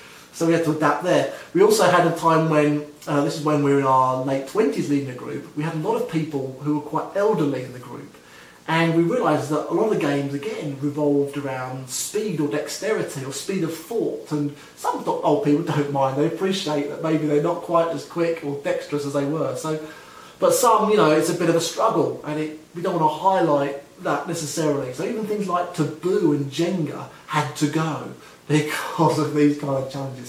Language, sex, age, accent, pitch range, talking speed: English, male, 30-49, British, 145-175 Hz, 225 wpm